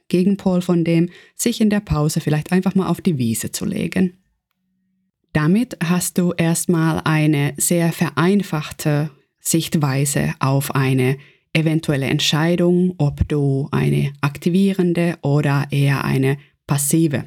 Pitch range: 155-190 Hz